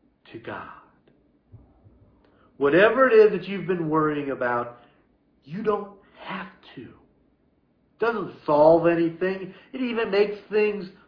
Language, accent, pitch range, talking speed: English, American, 150-210 Hz, 120 wpm